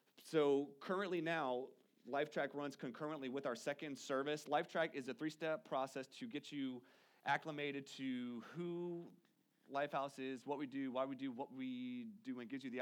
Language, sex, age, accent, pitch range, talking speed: English, male, 30-49, American, 120-155 Hz, 170 wpm